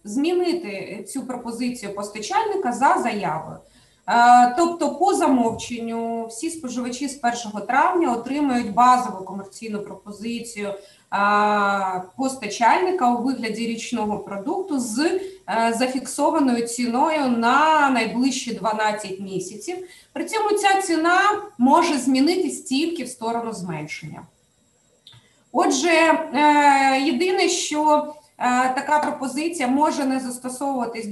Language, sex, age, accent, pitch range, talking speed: Ukrainian, female, 20-39, native, 235-325 Hz, 95 wpm